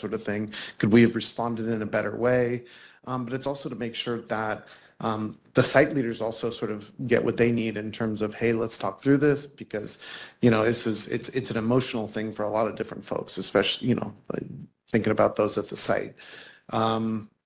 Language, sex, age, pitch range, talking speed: English, male, 30-49, 105-120 Hz, 225 wpm